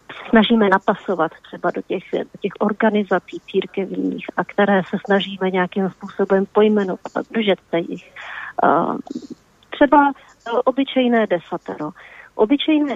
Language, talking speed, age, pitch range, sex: Slovak, 100 wpm, 40-59, 185-235 Hz, female